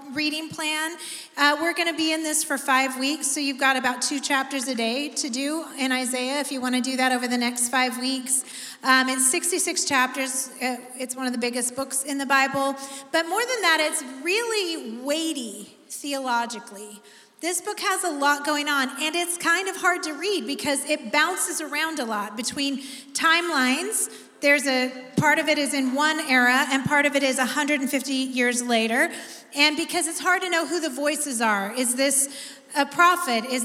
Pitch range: 260-330 Hz